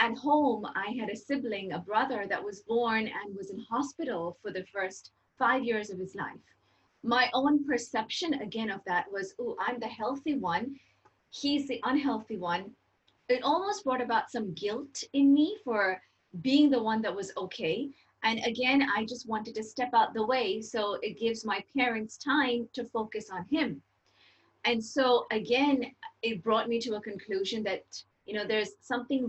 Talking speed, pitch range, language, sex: 180 wpm, 215-270 Hz, English, female